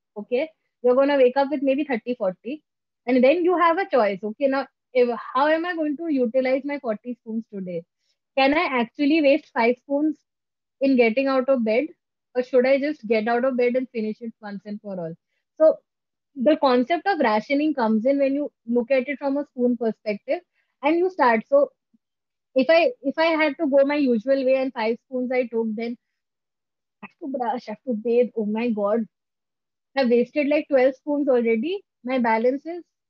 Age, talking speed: 20-39, 200 wpm